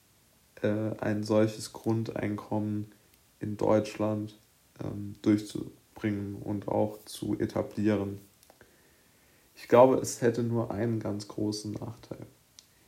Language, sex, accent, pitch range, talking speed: German, male, German, 105-120 Hz, 95 wpm